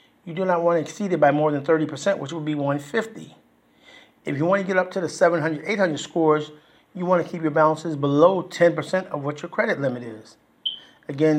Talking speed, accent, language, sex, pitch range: 215 wpm, American, English, male, 150-185 Hz